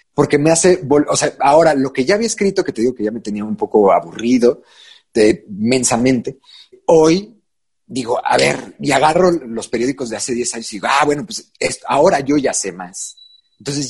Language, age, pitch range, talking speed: Spanish, 40-59, 105-150 Hz, 205 wpm